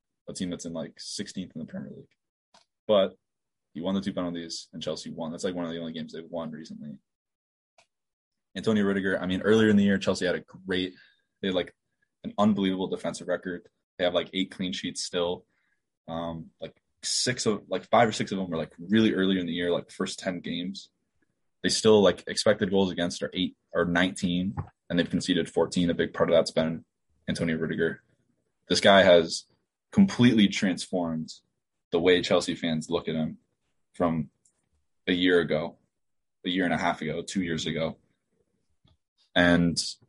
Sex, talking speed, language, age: male, 185 wpm, English, 20-39